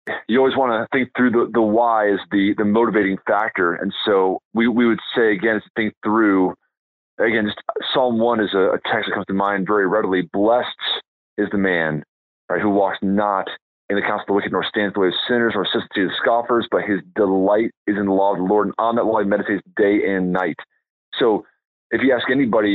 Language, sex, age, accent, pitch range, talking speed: English, male, 30-49, American, 100-120 Hz, 230 wpm